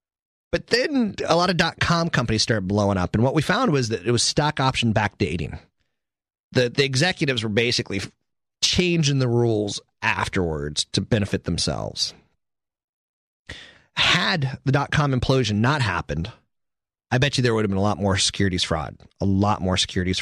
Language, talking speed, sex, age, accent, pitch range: English, 165 wpm, male, 30-49, American, 110-145 Hz